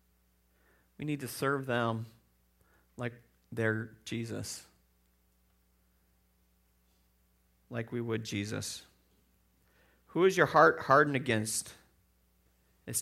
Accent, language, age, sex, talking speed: American, English, 40-59, male, 90 wpm